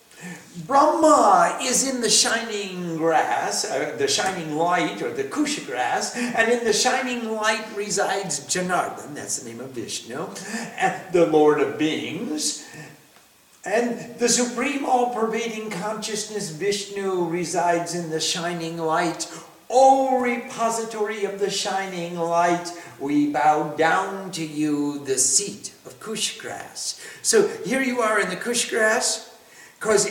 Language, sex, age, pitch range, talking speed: English, male, 50-69, 165-230 Hz, 135 wpm